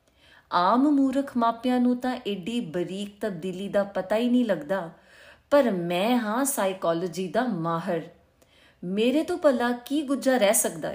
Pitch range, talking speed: 180-235 Hz, 145 wpm